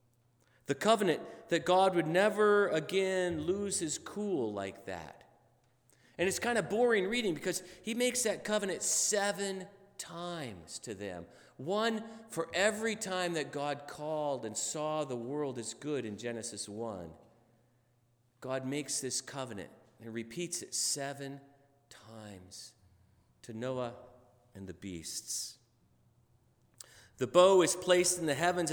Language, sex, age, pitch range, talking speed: English, male, 40-59, 120-185 Hz, 135 wpm